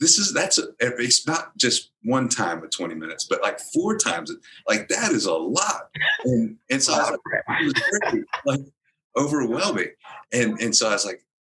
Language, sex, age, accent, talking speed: English, male, 30-49, American, 200 wpm